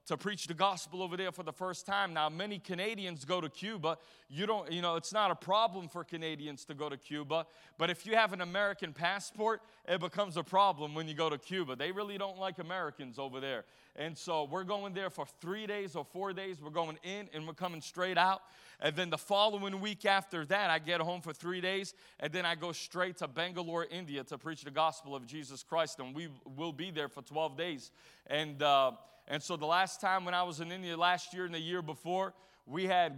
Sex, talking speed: male, 230 wpm